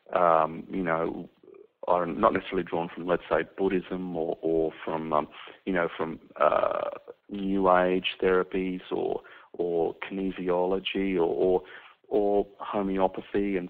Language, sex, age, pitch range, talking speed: English, male, 40-59, 90-110 Hz, 130 wpm